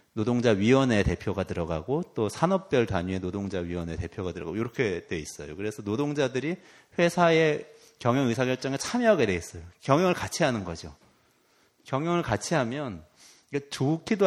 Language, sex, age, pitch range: Korean, male, 30-49, 95-135 Hz